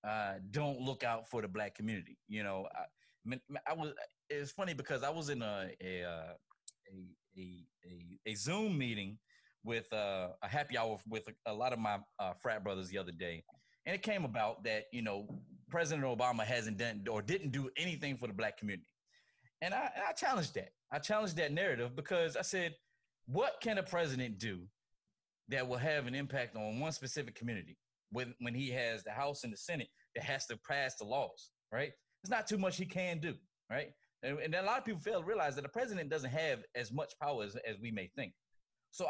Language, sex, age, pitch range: English, male, 30-49, 110-170 Hz